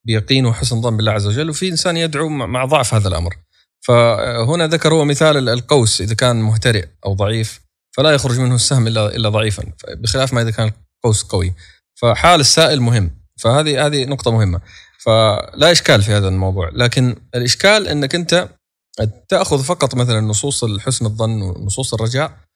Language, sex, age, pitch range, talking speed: Arabic, male, 20-39, 105-140 Hz, 155 wpm